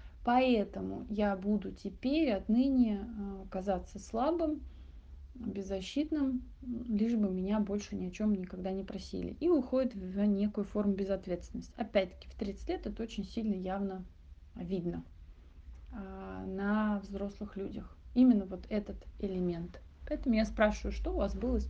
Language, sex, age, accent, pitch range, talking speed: Russian, female, 20-39, native, 185-230 Hz, 135 wpm